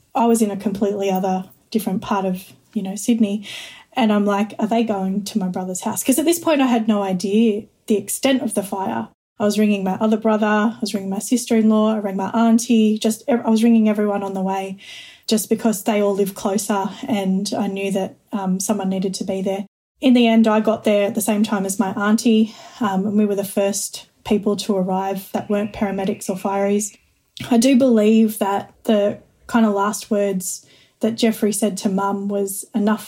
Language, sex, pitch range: English, female, 195-220 Hz